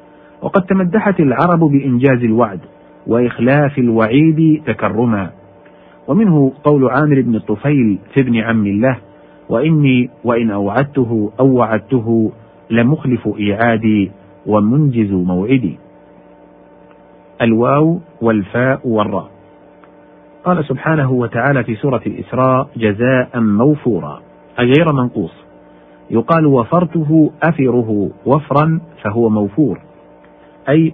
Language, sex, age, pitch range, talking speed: Arabic, male, 40-59, 115-150 Hz, 90 wpm